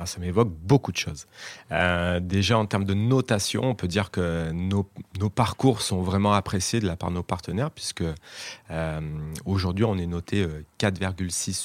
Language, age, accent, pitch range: French, 30-49, French, 90-105 Hz